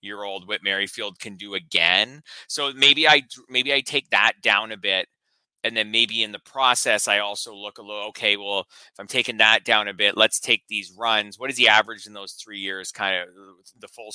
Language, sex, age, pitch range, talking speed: English, male, 20-39, 100-130 Hz, 225 wpm